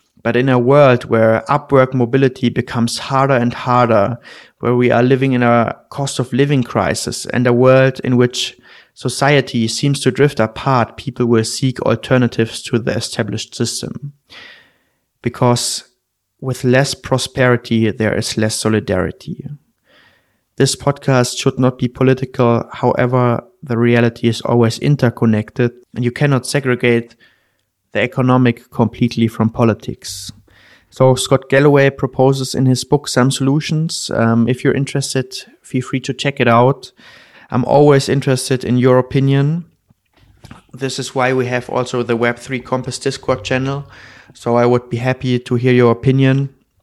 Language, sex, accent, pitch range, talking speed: German, male, German, 120-130 Hz, 140 wpm